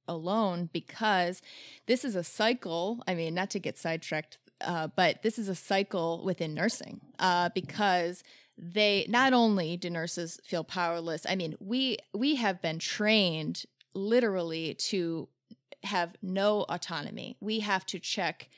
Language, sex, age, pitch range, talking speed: English, female, 30-49, 175-215 Hz, 145 wpm